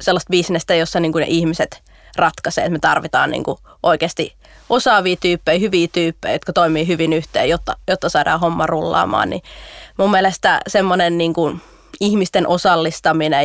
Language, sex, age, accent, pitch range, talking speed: Finnish, female, 20-39, native, 165-190 Hz, 120 wpm